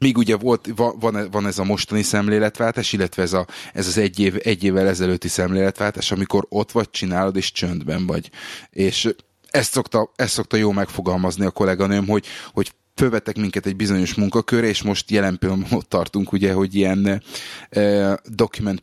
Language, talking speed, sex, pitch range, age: Hungarian, 170 wpm, male, 95-105 Hz, 30-49